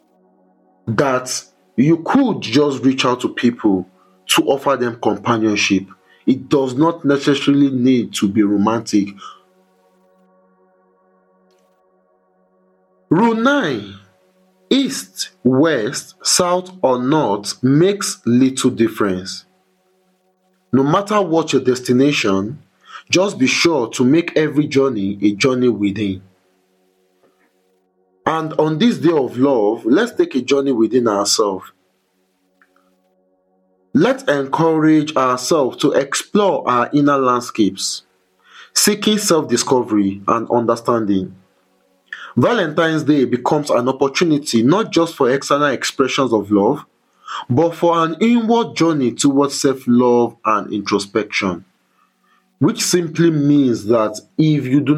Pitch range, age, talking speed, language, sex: 95-150 Hz, 50-69, 105 wpm, English, male